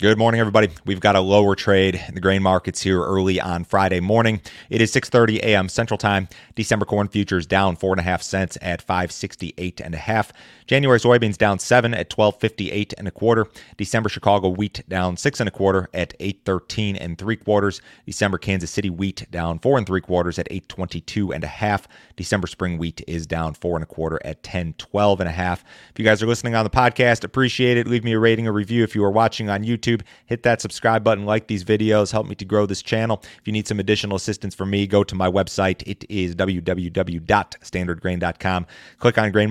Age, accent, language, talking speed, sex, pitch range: 30-49, American, English, 210 wpm, male, 90-110 Hz